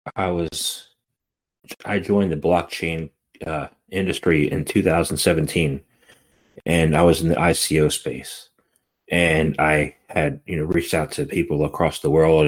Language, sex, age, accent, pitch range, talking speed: English, male, 40-59, American, 80-105 Hz, 140 wpm